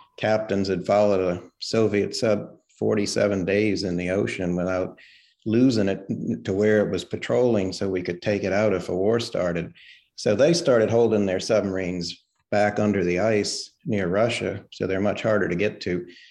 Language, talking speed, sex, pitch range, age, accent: English, 175 wpm, male, 90-110 Hz, 50-69, American